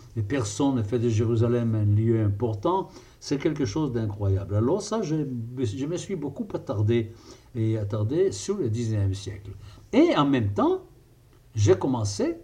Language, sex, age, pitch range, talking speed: French, male, 60-79, 110-155 Hz, 160 wpm